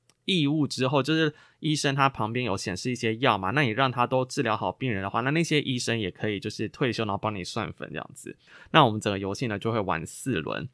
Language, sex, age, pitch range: Chinese, male, 20-39, 110-140 Hz